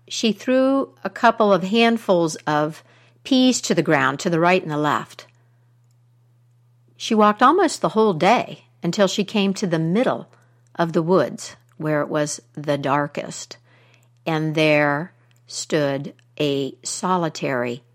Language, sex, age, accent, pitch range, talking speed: English, female, 60-79, American, 120-195 Hz, 140 wpm